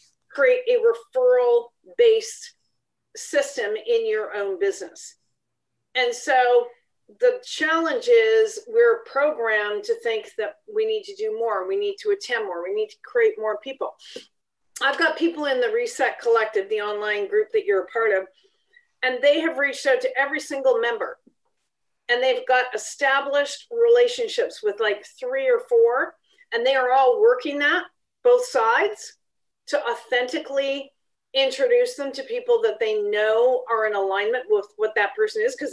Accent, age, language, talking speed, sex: American, 40-59, English, 160 wpm, female